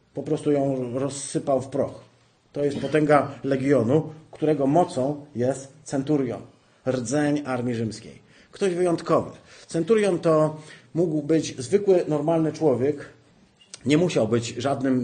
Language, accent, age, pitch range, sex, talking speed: Polish, native, 40-59, 130-155 Hz, male, 120 wpm